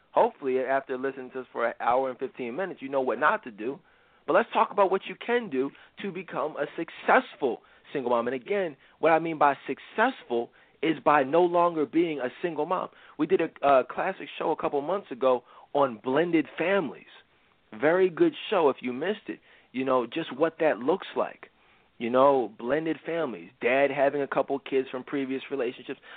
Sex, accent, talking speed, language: male, American, 195 wpm, English